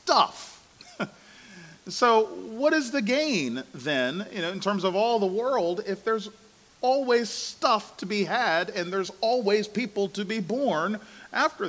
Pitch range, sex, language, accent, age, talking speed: 200-255 Hz, male, English, American, 40-59, 155 wpm